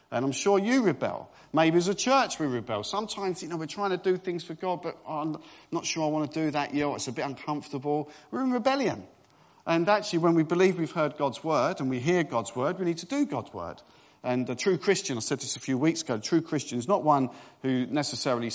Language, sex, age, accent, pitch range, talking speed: English, male, 40-59, British, 125-185 Hz, 250 wpm